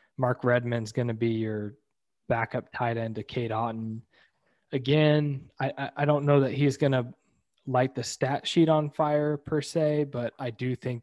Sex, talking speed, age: male, 180 wpm, 20-39